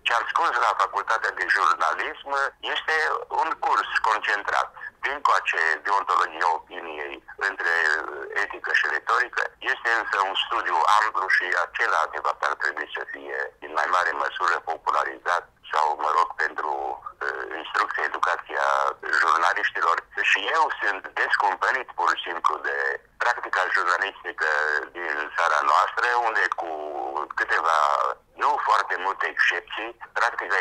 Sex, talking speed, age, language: male, 120 wpm, 50-69, English